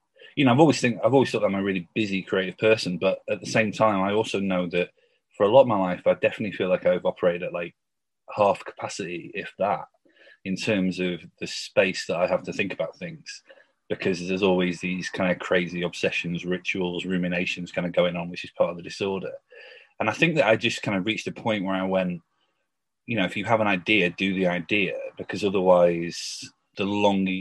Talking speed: 220 wpm